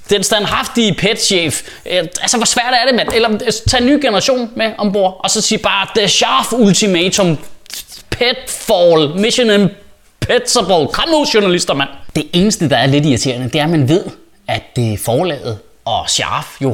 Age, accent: 20-39, native